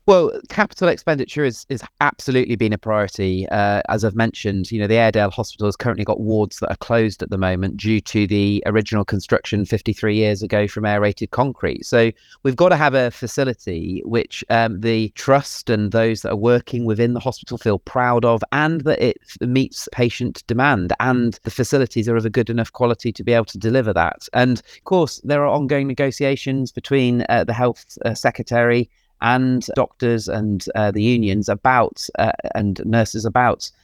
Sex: male